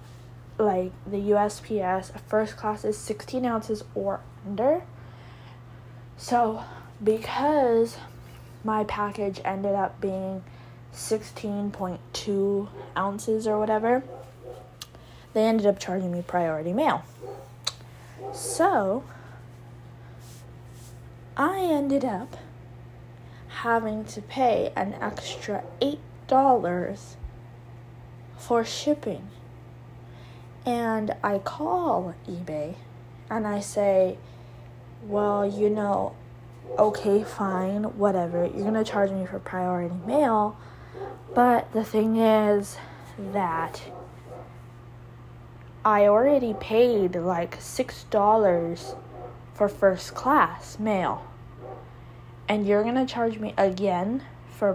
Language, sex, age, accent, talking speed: English, female, 10-29, American, 90 wpm